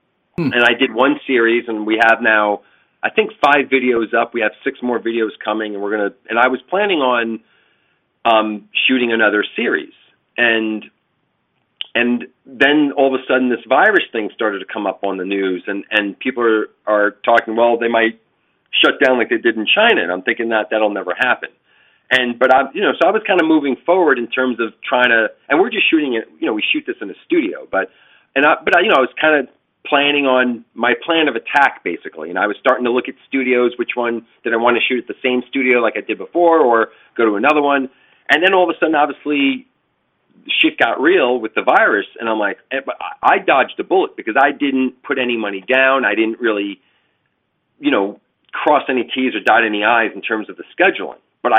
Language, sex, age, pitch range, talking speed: English, male, 40-59, 115-145 Hz, 225 wpm